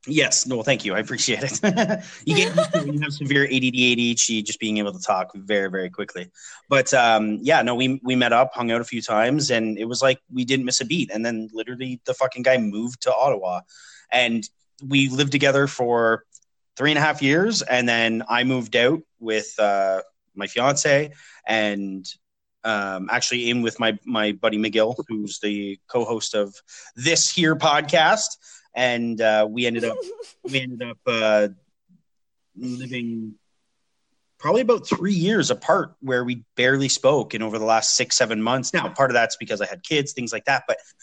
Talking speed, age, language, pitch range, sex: 185 wpm, 30-49, English, 110-140 Hz, male